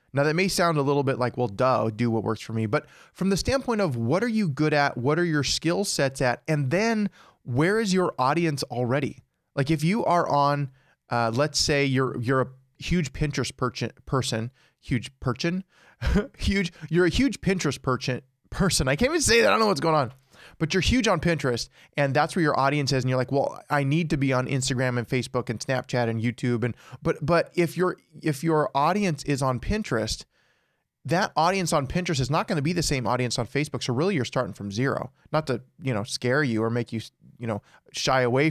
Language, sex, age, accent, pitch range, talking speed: English, male, 20-39, American, 125-160 Hz, 225 wpm